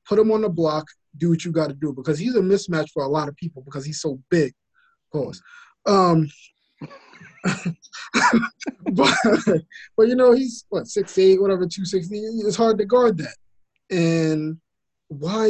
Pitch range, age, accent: 150-195 Hz, 20-39, American